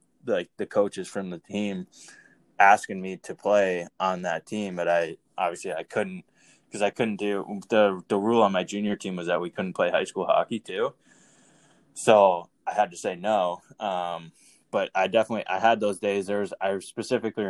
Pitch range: 90-105 Hz